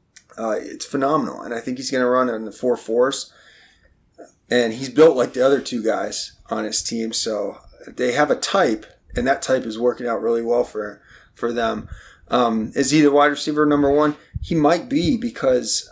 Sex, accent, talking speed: male, American, 200 wpm